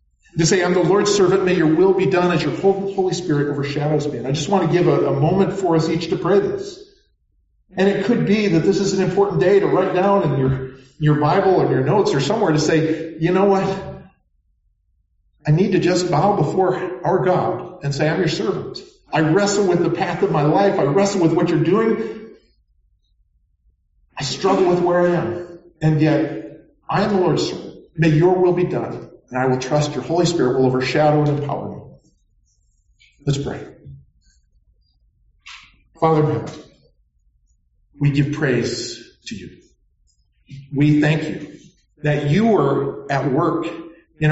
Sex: male